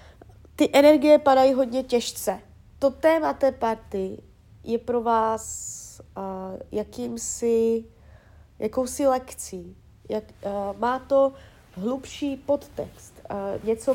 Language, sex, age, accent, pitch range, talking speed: Czech, female, 30-49, native, 180-245 Hz, 105 wpm